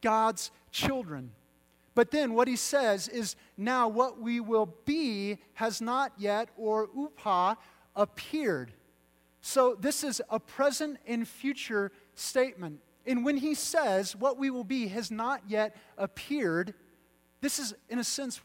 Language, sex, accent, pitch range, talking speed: English, male, American, 180-235 Hz, 145 wpm